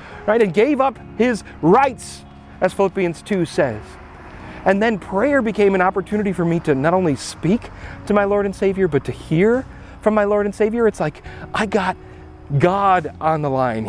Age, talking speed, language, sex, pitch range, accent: 40-59, 185 wpm, English, male, 185-275 Hz, American